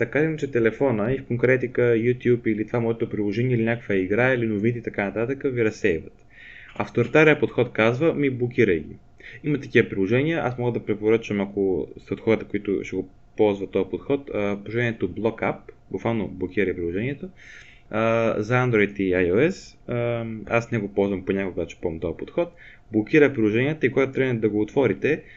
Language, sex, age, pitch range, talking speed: Bulgarian, male, 20-39, 105-130 Hz, 175 wpm